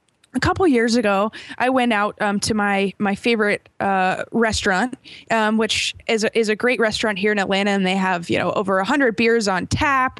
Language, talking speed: English, 205 wpm